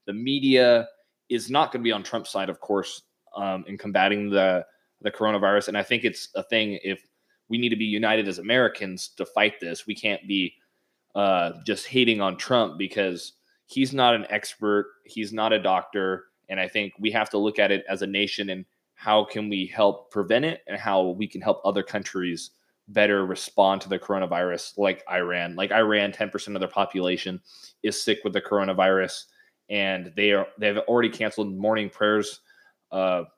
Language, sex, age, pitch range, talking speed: English, male, 20-39, 95-110 Hz, 190 wpm